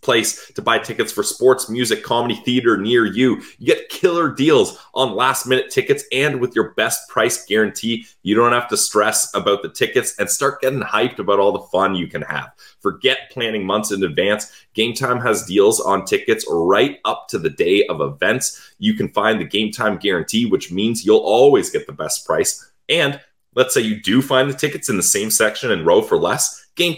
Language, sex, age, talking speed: English, male, 20-39, 210 wpm